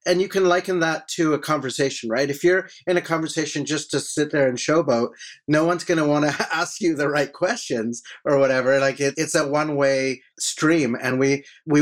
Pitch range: 140-170 Hz